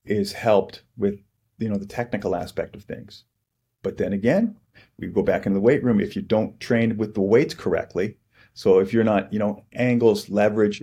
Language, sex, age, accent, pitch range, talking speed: English, male, 40-59, American, 100-115 Hz, 200 wpm